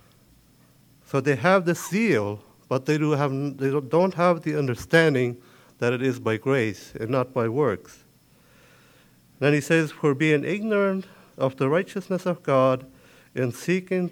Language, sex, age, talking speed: English, male, 50-69, 140 wpm